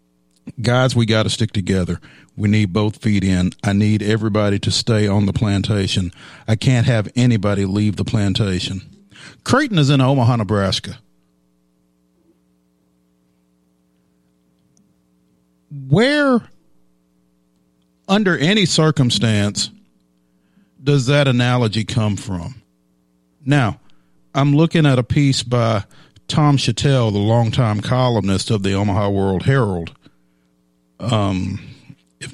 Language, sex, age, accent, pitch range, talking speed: English, male, 50-69, American, 85-120 Hz, 110 wpm